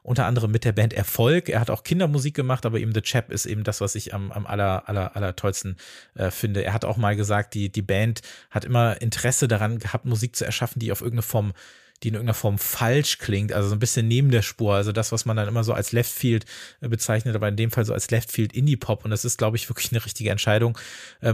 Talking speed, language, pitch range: 255 wpm, German, 110-130 Hz